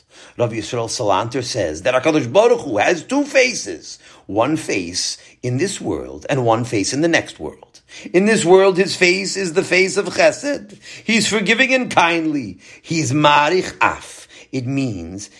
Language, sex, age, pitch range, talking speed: English, male, 50-69, 120-180 Hz, 165 wpm